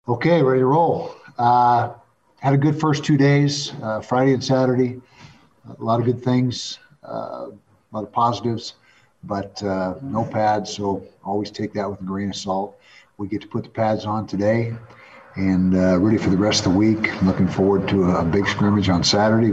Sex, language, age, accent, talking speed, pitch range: male, English, 50-69, American, 195 wpm, 90-110 Hz